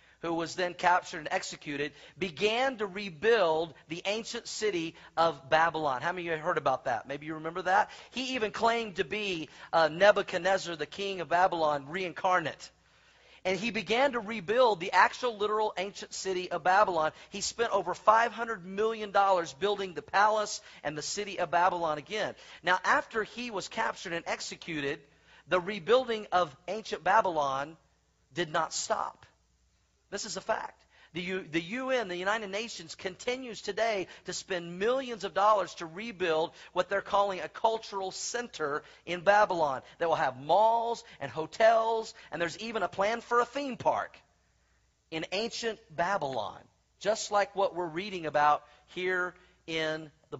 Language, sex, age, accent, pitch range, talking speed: English, male, 40-59, American, 165-215 Hz, 160 wpm